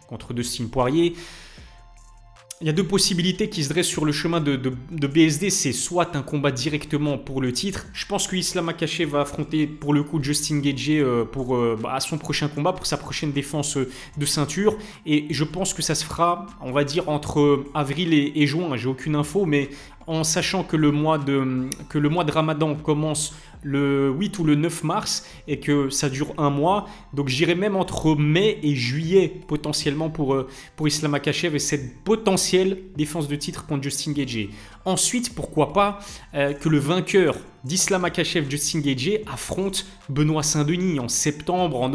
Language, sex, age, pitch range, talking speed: French, male, 20-39, 145-175 Hz, 185 wpm